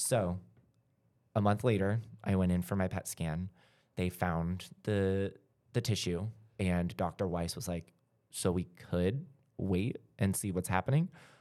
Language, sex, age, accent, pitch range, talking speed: English, male, 30-49, American, 85-110 Hz, 155 wpm